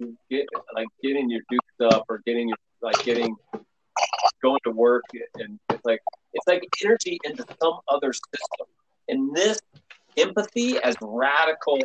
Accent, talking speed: American, 140 wpm